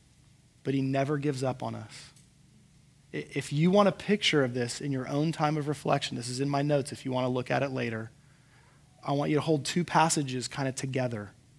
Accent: American